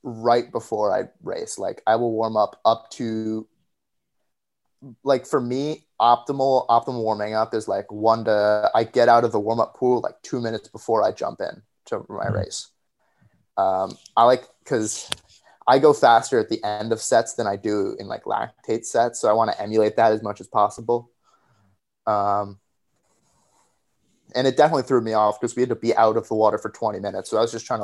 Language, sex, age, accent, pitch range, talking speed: English, male, 20-39, American, 105-120 Hz, 200 wpm